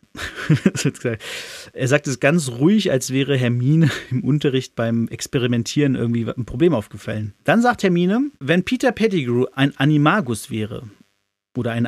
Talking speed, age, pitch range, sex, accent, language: 135 wpm, 40-59, 125-165 Hz, male, German, German